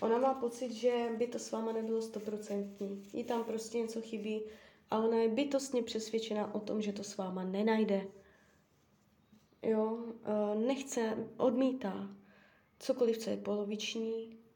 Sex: female